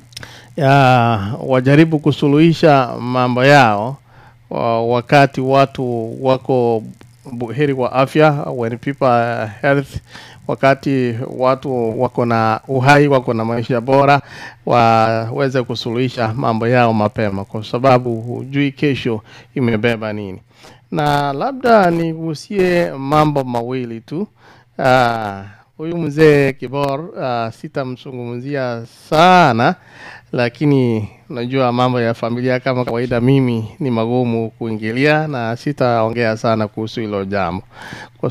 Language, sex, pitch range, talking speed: English, male, 115-140 Hz, 100 wpm